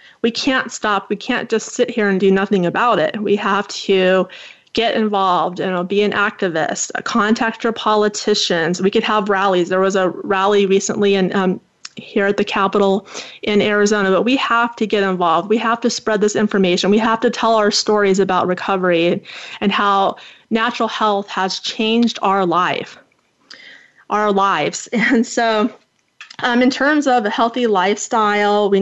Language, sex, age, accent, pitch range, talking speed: English, female, 30-49, American, 195-230 Hz, 170 wpm